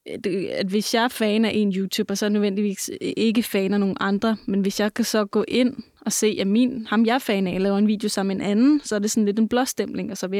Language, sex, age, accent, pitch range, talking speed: Danish, female, 20-39, native, 200-235 Hz, 290 wpm